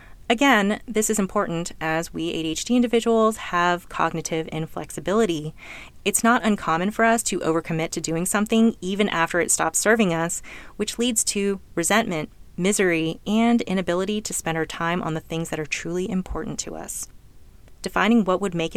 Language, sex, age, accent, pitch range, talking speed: English, female, 30-49, American, 165-220 Hz, 165 wpm